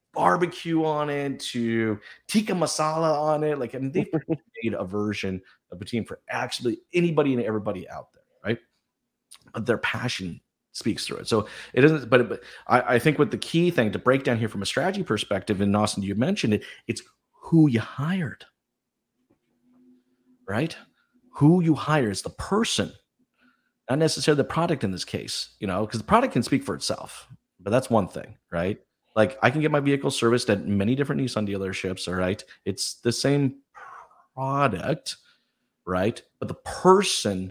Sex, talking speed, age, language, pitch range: male, 180 wpm, 30-49, English, 110-160 Hz